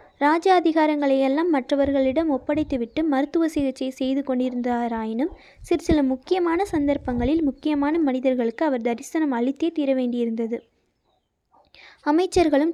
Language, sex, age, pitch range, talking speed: Tamil, female, 20-39, 260-310 Hz, 95 wpm